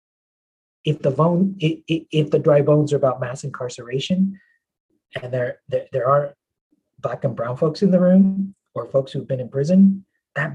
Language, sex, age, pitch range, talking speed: English, male, 30-49, 130-155 Hz, 170 wpm